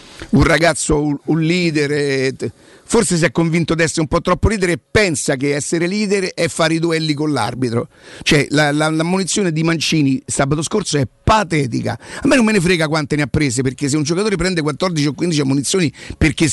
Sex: male